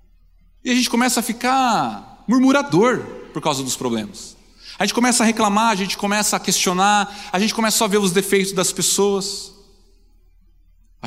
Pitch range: 185-240 Hz